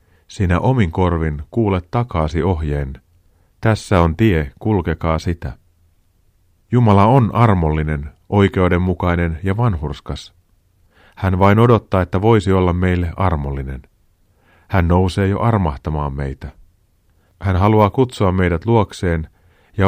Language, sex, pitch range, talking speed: Finnish, male, 85-105 Hz, 110 wpm